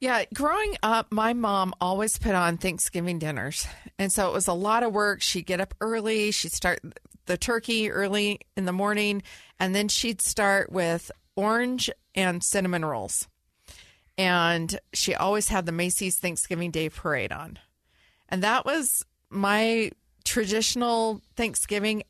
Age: 40-59